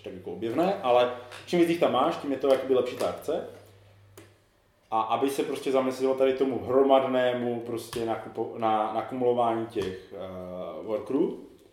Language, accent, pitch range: Czech, native, 110-135 Hz